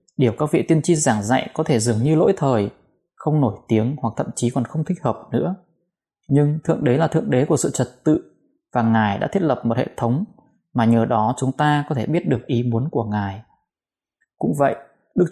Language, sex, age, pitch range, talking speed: Vietnamese, male, 20-39, 115-155 Hz, 225 wpm